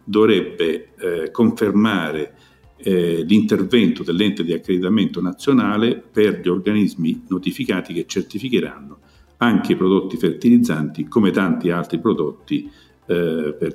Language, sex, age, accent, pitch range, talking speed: Italian, male, 50-69, native, 85-120 Hz, 95 wpm